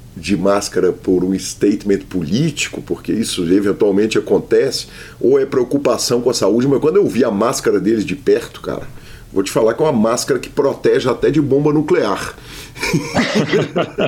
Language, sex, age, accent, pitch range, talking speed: Portuguese, male, 40-59, Brazilian, 105-160 Hz, 165 wpm